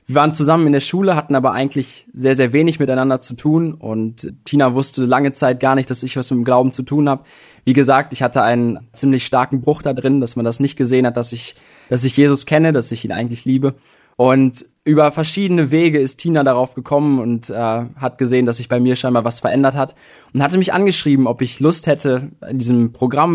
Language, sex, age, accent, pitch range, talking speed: German, male, 20-39, German, 125-150 Hz, 230 wpm